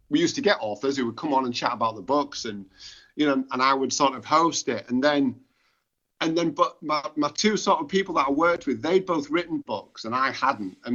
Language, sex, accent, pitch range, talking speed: Danish, male, British, 120-170 Hz, 260 wpm